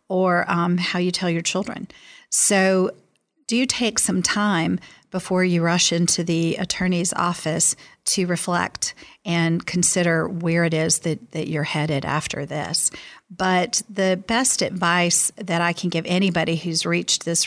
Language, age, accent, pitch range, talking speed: English, 40-59, American, 165-185 Hz, 150 wpm